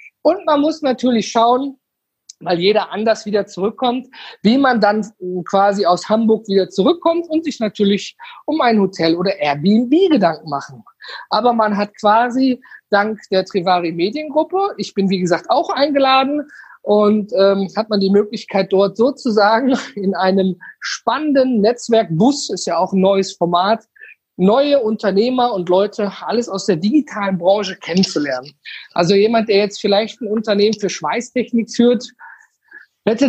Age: 50-69